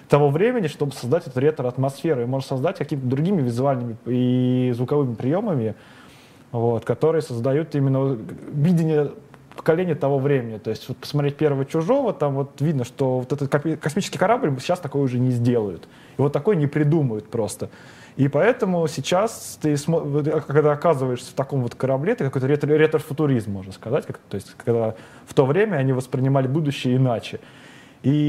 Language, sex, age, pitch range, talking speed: Russian, male, 20-39, 130-155 Hz, 155 wpm